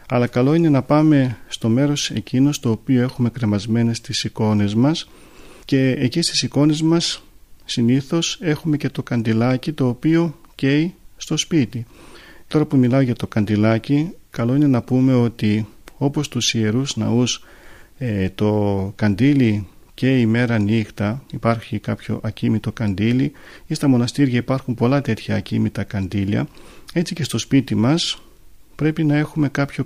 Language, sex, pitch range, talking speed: Greek, male, 110-135 Hz, 140 wpm